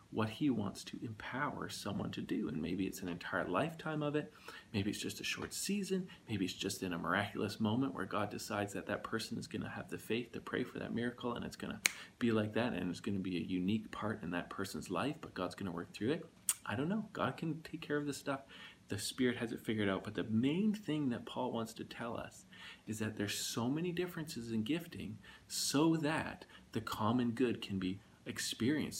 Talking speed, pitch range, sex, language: 235 wpm, 100-130 Hz, male, English